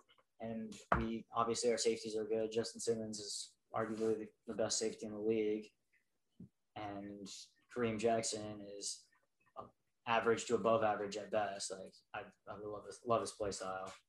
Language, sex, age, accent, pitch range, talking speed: English, male, 10-29, American, 110-120 Hz, 160 wpm